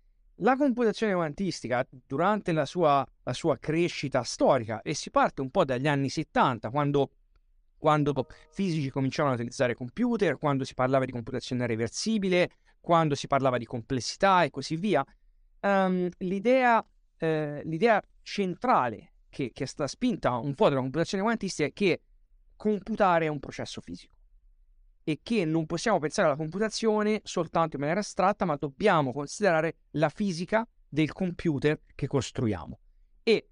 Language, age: Italian, 30-49